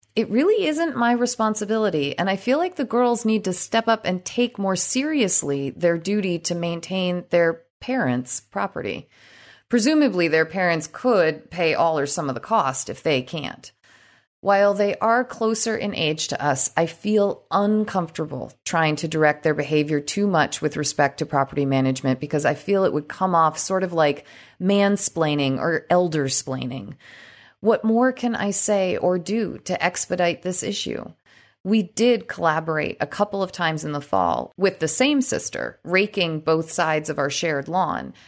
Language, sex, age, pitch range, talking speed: English, female, 30-49, 160-235 Hz, 170 wpm